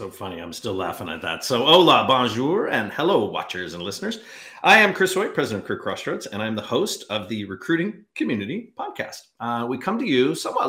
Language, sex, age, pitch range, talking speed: English, male, 40-59, 115-175 Hz, 210 wpm